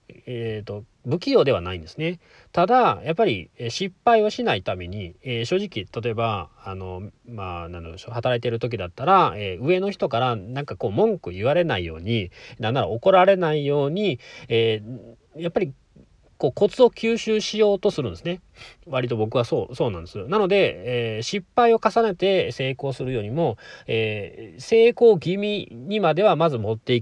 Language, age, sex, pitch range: Japanese, 40-59, male, 115-185 Hz